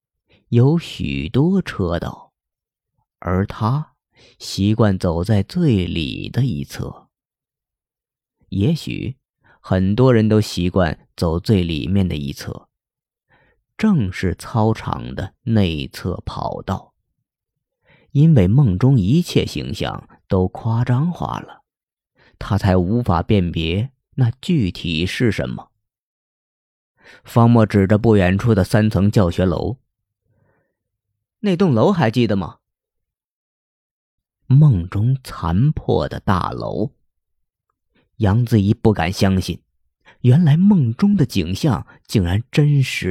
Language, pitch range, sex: Chinese, 95-135 Hz, male